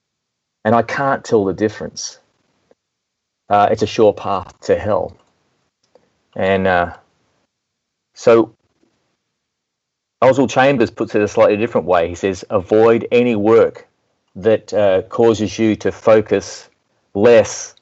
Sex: male